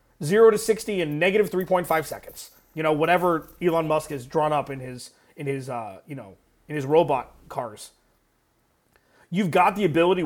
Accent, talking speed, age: American, 175 wpm, 30-49